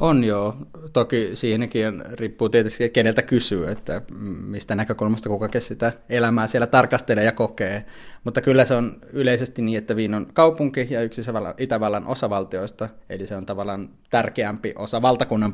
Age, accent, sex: 20-39, native, male